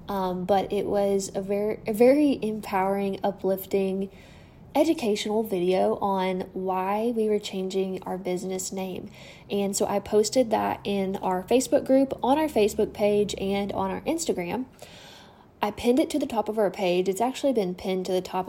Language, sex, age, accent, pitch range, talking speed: English, female, 10-29, American, 190-220 Hz, 170 wpm